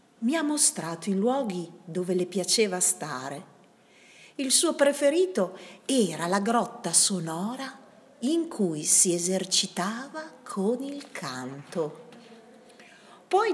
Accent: native